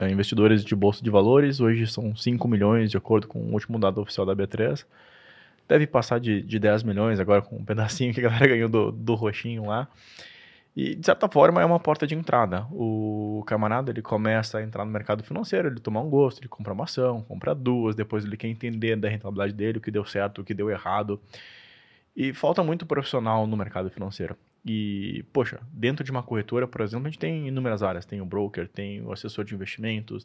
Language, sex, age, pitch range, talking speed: Portuguese, male, 20-39, 105-130 Hz, 210 wpm